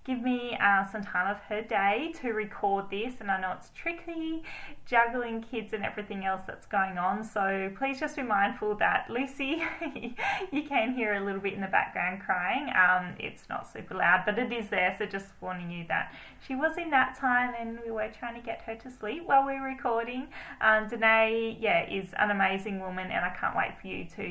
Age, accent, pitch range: 10-29, Australian, 200-255 Hz